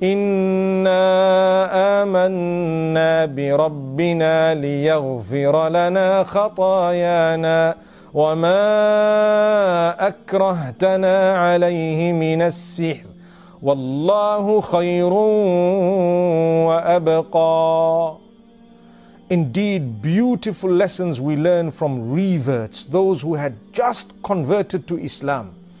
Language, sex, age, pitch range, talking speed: English, male, 40-59, 155-190 Hz, 70 wpm